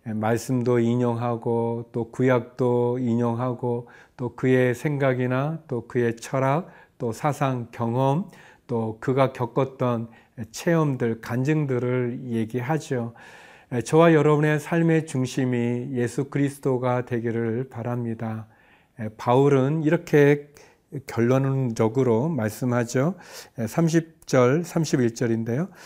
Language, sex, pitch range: Korean, male, 120-150 Hz